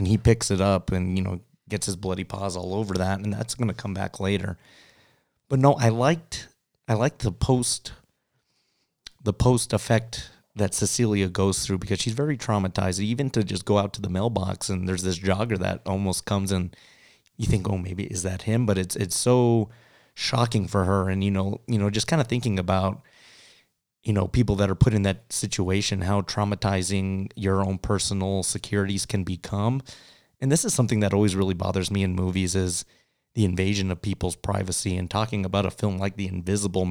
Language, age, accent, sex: English, 30-49, American, male